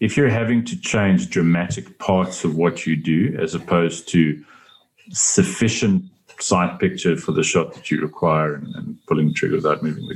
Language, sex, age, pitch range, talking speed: English, male, 40-59, 80-95 Hz, 185 wpm